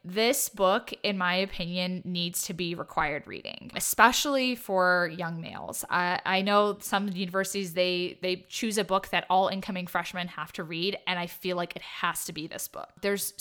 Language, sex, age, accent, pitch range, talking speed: English, female, 20-39, American, 180-205 Hz, 190 wpm